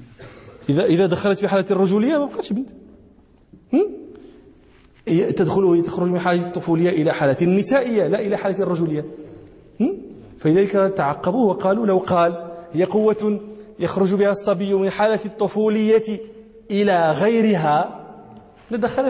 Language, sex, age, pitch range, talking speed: English, male, 40-59, 130-195 Hz, 125 wpm